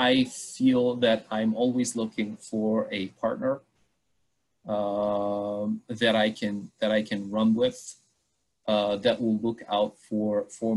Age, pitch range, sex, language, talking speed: 30-49, 105-120 Hz, male, English, 140 wpm